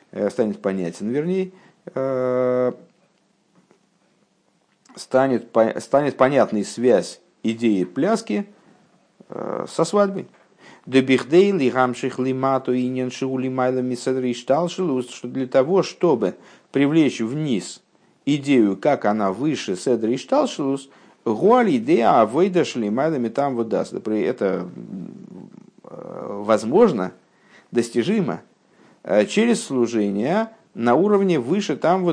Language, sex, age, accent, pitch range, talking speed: Russian, male, 50-69, native, 110-145 Hz, 95 wpm